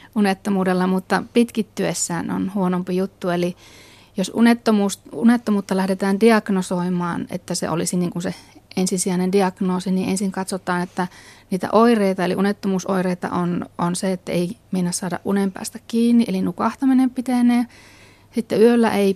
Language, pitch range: Finnish, 185-210 Hz